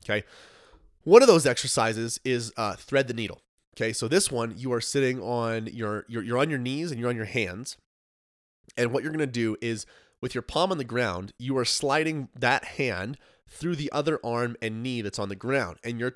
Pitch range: 110-135 Hz